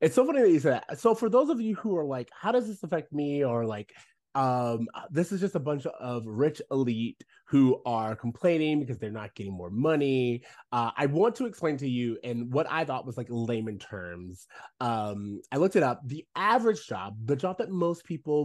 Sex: male